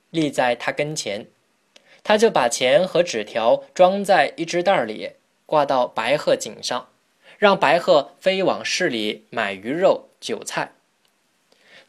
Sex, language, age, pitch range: male, Chinese, 20-39, 140-200 Hz